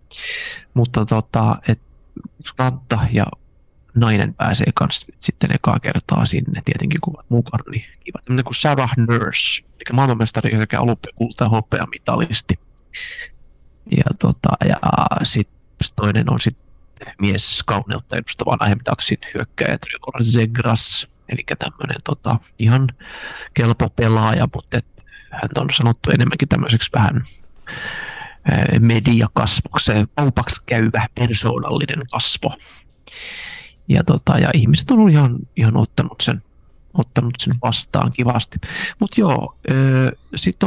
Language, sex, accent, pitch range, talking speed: Finnish, male, native, 110-140 Hz, 110 wpm